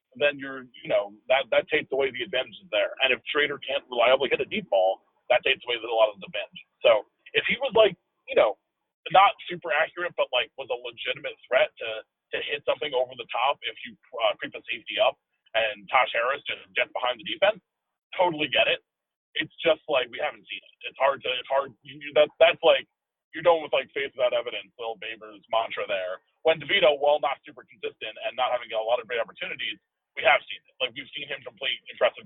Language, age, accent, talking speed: English, 40-59, American, 225 wpm